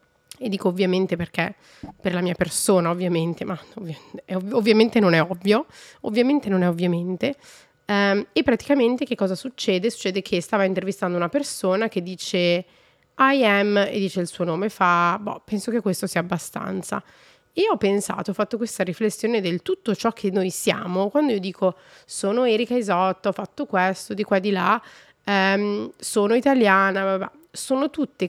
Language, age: Italian, 30-49